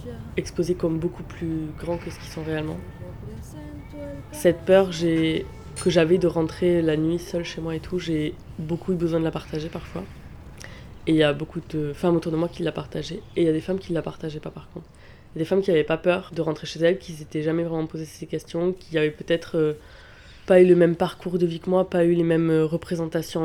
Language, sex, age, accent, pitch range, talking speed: French, female, 20-39, French, 155-175 Hz, 245 wpm